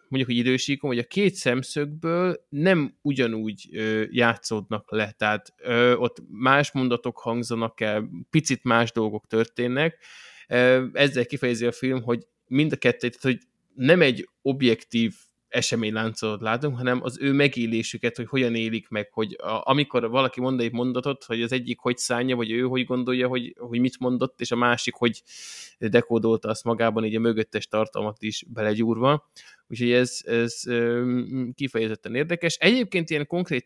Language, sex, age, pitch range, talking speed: Hungarian, male, 20-39, 110-125 Hz, 155 wpm